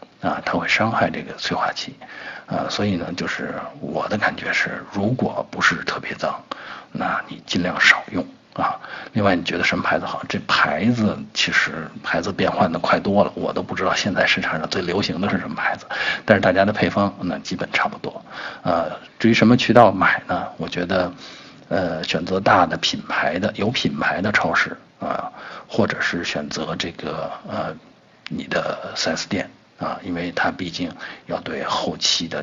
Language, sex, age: Chinese, male, 50-69